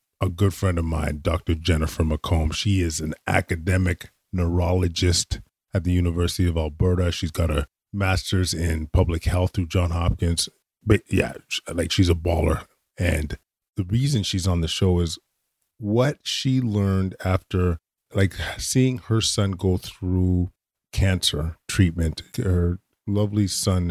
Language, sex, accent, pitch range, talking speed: English, male, American, 85-100 Hz, 145 wpm